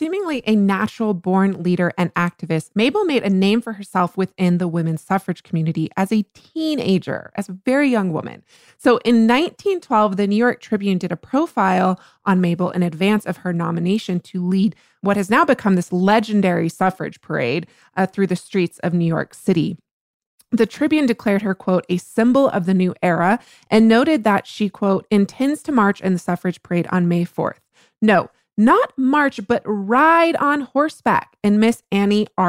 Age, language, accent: 20-39, English, American